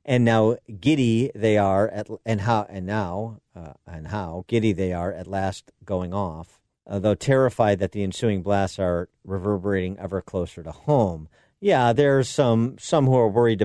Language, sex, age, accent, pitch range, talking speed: English, male, 50-69, American, 95-140 Hz, 165 wpm